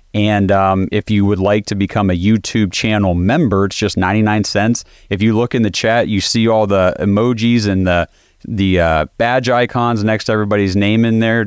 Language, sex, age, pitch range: English, male, 30-49, 95-110 Hz